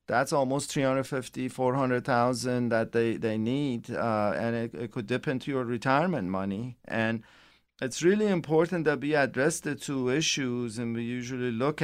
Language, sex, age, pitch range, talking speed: English, male, 50-69, 115-140 Hz, 160 wpm